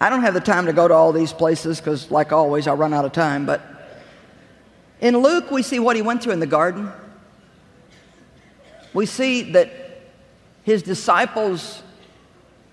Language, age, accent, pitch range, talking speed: English, 50-69, American, 170-240 Hz, 170 wpm